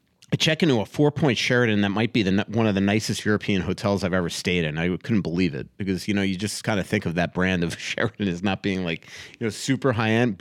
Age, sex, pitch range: 30-49, male, 105-125 Hz